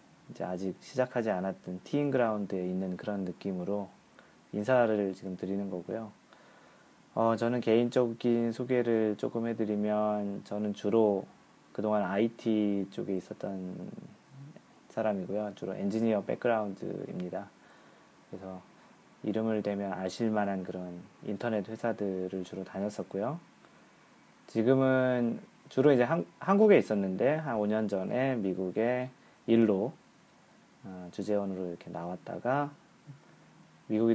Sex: male